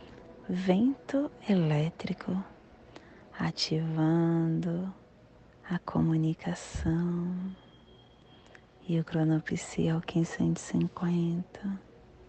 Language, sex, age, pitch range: Portuguese, female, 30-49, 155-180 Hz